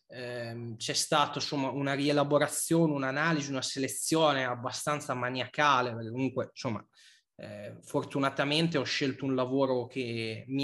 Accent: native